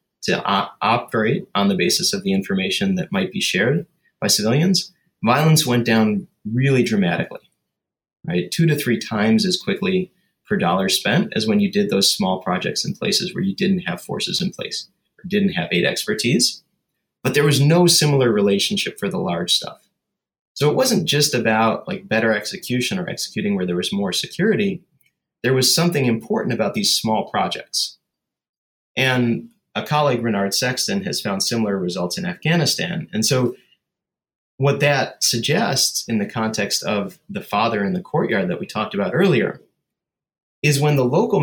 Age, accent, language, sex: 30-49, American, English, male